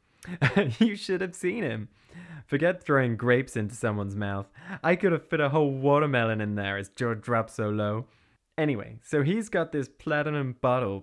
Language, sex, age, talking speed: English, male, 20-39, 175 wpm